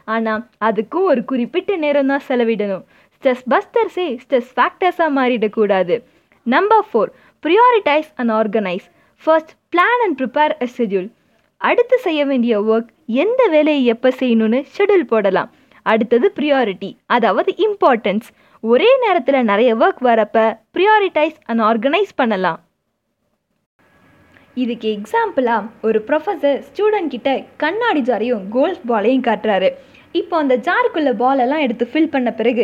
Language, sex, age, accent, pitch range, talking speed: Tamil, female, 20-39, native, 225-320 Hz, 95 wpm